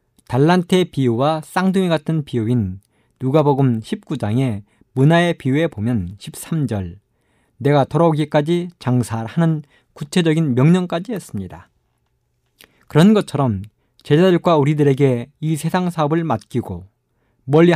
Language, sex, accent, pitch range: Korean, male, native, 120-165 Hz